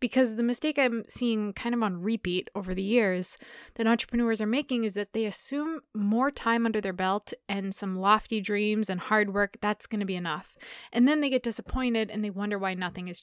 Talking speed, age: 220 wpm, 20-39